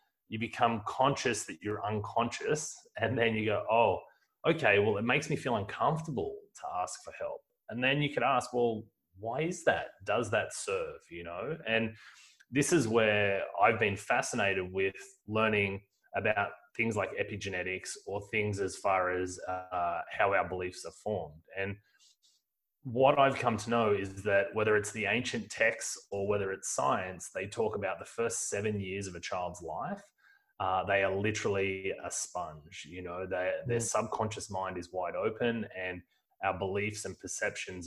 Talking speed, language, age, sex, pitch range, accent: 170 wpm, English, 30-49, male, 95-120 Hz, Australian